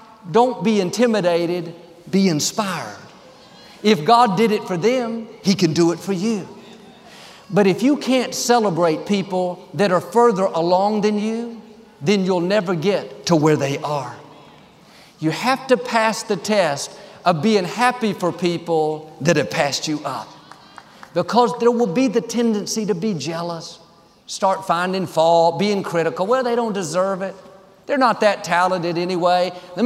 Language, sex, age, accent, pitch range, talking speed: English, male, 50-69, American, 165-220 Hz, 155 wpm